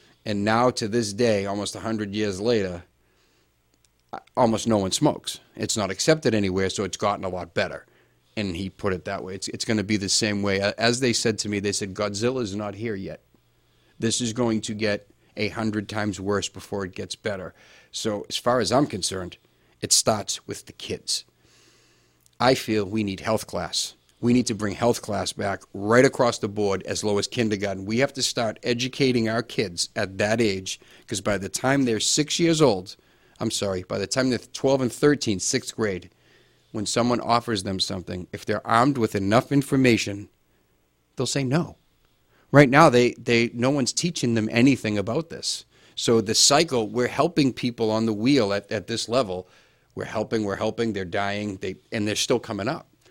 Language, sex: English, male